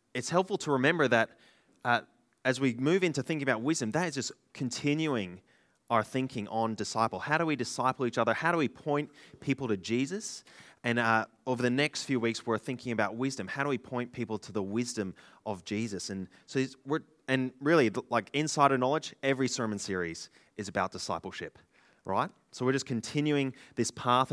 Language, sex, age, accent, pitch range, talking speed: English, male, 20-39, Australian, 110-140 Hz, 190 wpm